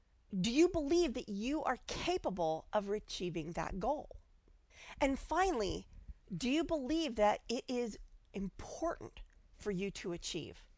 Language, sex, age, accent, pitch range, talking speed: English, female, 40-59, American, 195-280 Hz, 135 wpm